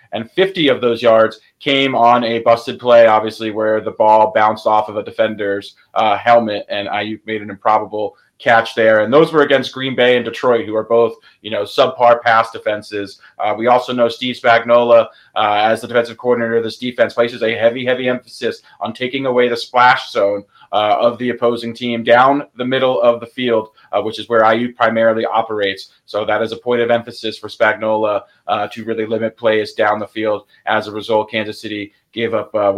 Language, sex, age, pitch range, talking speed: English, male, 20-39, 110-125 Hz, 205 wpm